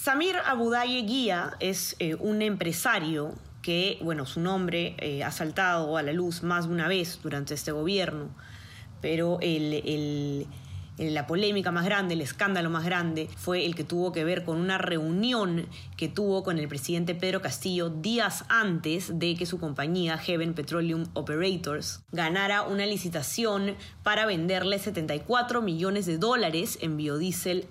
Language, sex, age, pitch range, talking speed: Spanish, female, 20-39, 160-195 Hz, 150 wpm